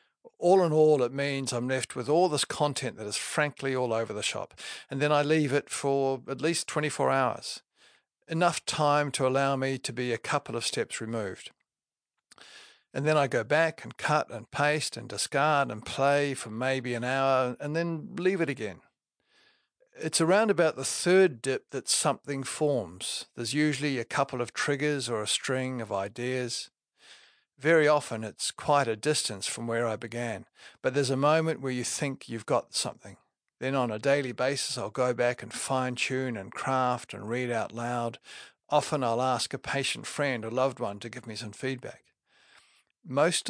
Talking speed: 185 wpm